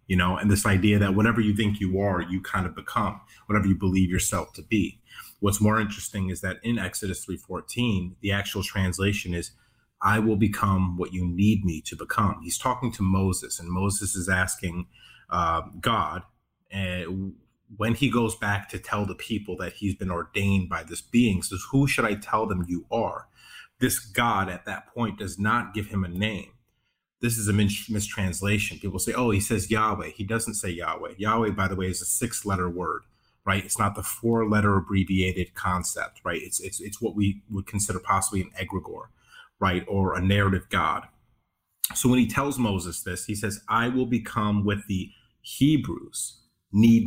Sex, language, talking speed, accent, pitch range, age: male, English, 190 wpm, American, 95-110 Hz, 30-49